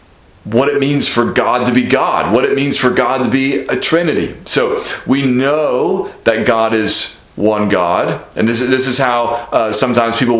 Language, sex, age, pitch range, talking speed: English, male, 30-49, 115-135 Hz, 195 wpm